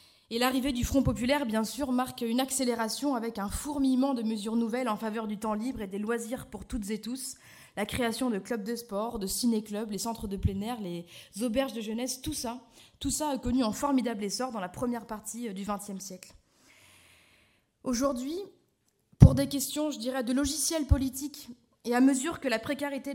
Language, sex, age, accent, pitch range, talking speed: French, female, 20-39, French, 225-275 Hz, 195 wpm